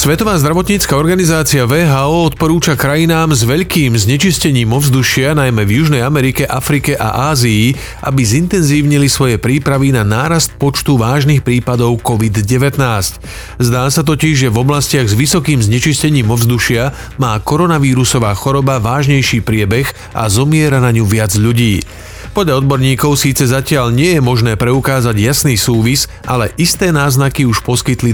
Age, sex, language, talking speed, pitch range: 40-59, male, Slovak, 135 wpm, 120-150 Hz